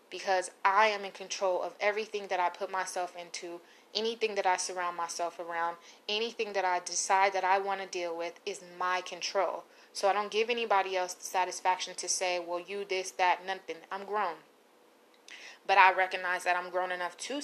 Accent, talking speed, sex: American, 195 wpm, female